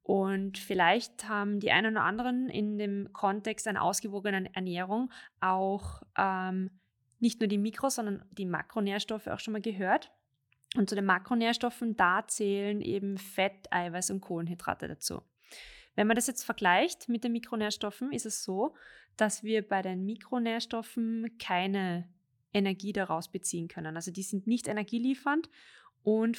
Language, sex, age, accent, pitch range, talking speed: German, female, 20-39, German, 185-225 Hz, 150 wpm